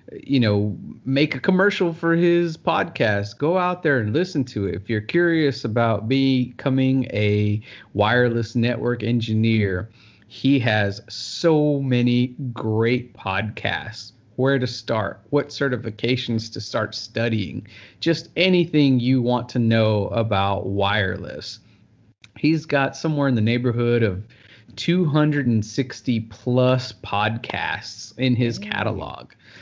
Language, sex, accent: English, male, American